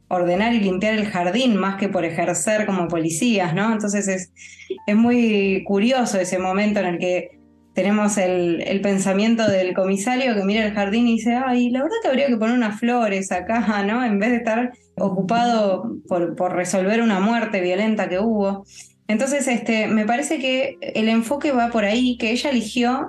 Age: 20-39